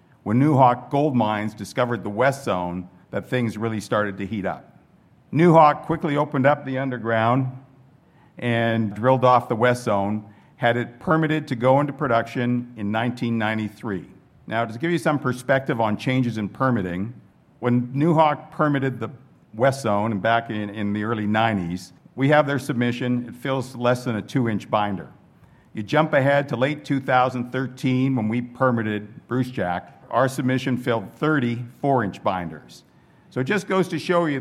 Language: English